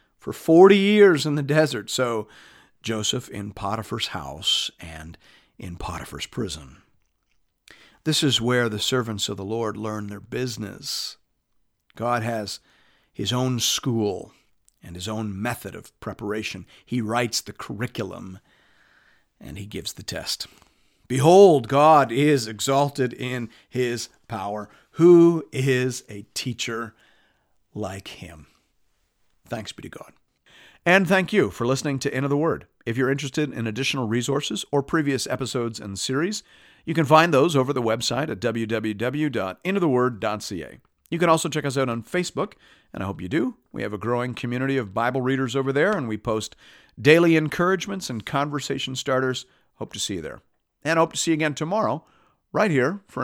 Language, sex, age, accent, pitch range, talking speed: English, male, 50-69, American, 105-140 Hz, 160 wpm